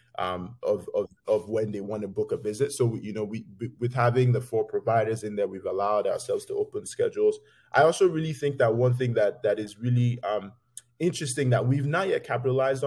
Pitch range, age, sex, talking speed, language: 115-165 Hz, 20-39, male, 220 wpm, English